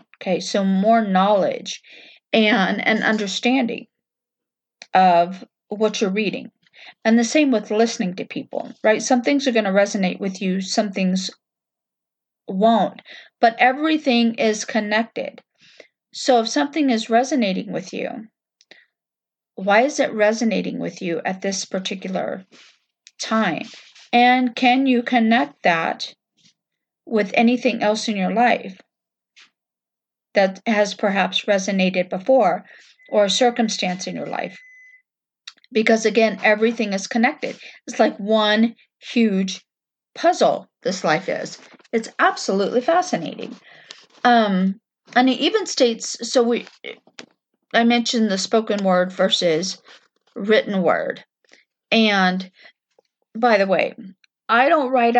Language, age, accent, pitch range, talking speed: English, 40-59, American, 200-245 Hz, 120 wpm